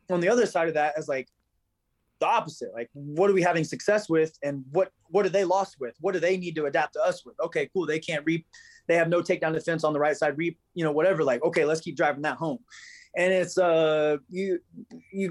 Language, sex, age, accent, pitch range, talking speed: English, male, 20-39, American, 150-185 Hz, 245 wpm